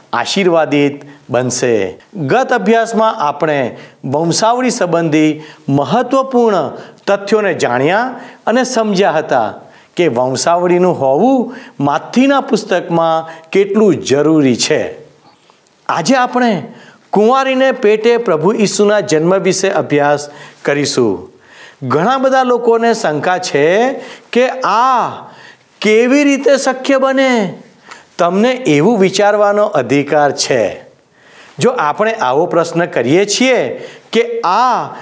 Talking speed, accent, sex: 95 wpm, native, male